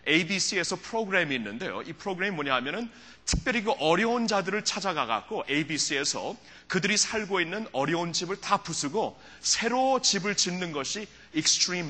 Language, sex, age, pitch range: Korean, male, 30-49, 160-230 Hz